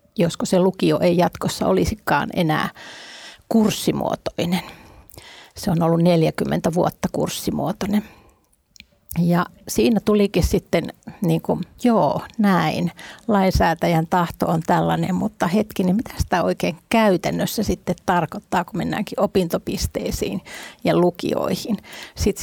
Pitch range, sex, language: 170-200 Hz, female, Finnish